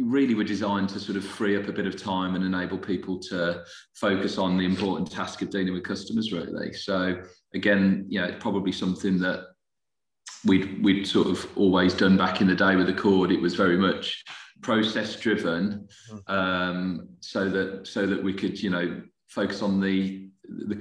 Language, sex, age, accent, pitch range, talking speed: English, male, 30-49, British, 95-105 Hz, 190 wpm